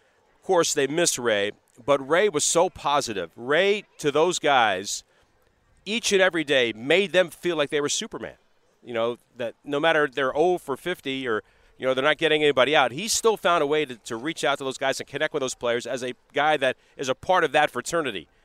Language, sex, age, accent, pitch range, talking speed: English, male, 40-59, American, 115-145 Hz, 220 wpm